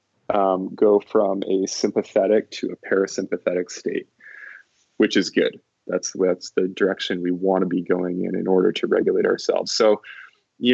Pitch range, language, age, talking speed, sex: 95-115 Hz, English, 20-39, 160 wpm, male